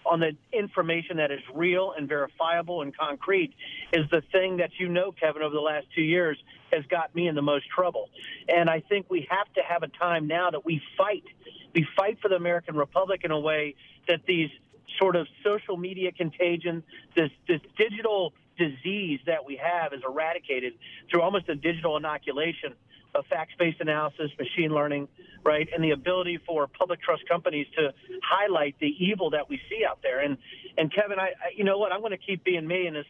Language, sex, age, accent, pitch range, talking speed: English, male, 40-59, American, 150-185 Hz, 205 wpm